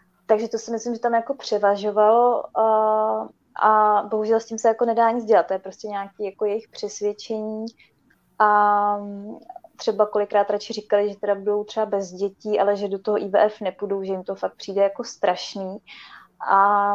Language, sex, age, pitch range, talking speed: Czech, female, 20-39, 195-220 Hz, 175 wpm